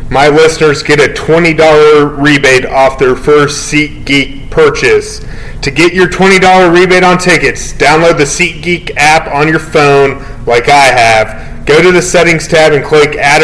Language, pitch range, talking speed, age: English, 140-160 Hz, 160 wpm, 30-49